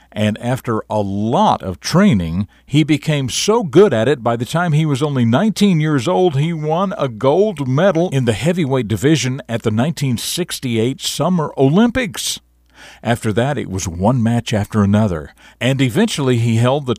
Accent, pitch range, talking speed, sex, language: American, 105-150 Hz, 170 wpm, male, English